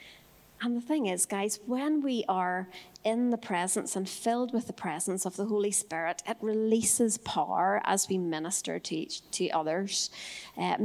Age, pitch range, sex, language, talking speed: 40-59, 190-240 Hz, female, English, 165 wpm